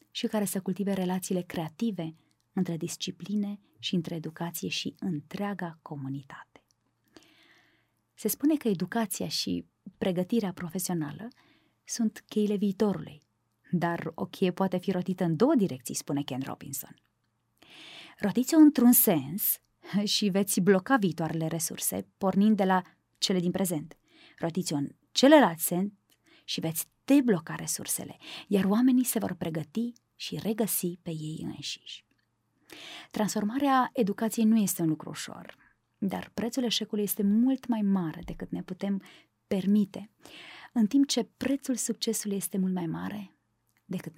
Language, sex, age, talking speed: Romanian, female, 20-39, 130 wpm